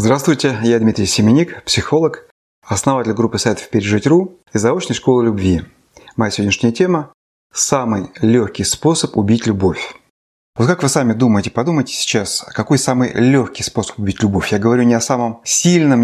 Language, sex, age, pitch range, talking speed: Russian, male, 30-49, 110-130 Hz, 150 wpm